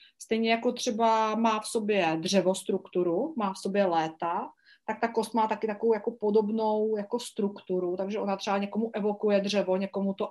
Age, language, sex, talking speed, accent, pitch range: 30-49, Czech, female, 170 wpm, native, 195-220 Hz